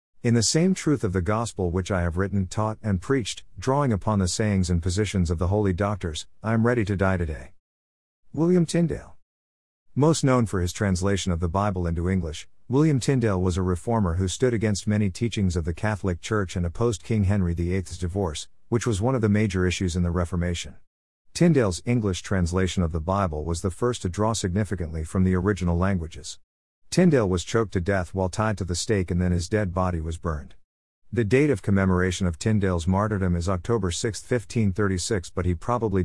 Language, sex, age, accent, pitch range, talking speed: English, male, 50-69, American, 90-110 Hz, 200 wpm